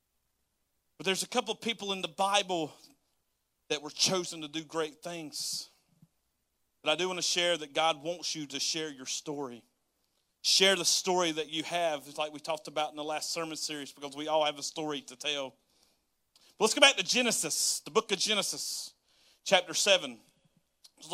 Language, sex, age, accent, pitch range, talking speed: English, male, 40-59, American, 160-205 Hz, 190 wpm